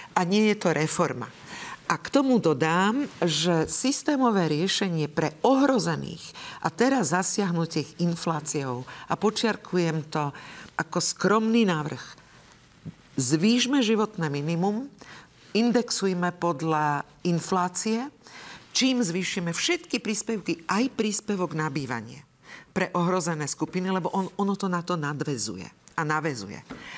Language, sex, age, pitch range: Slovak, female, 50-69, 160-215 Hz